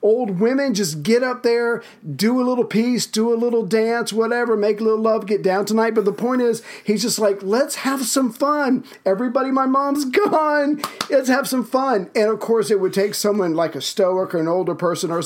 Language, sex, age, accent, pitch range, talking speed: English, male, 50-69, American, 165-225 Hz, 220 wpm